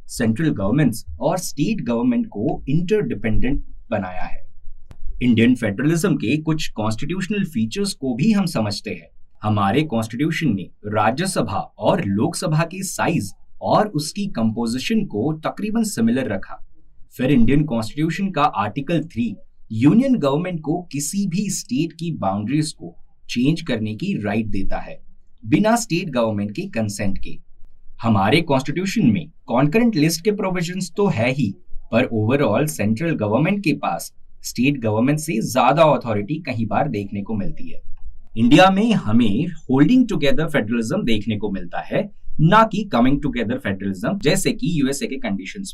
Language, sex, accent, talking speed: Hindi, male, native, 110 wpm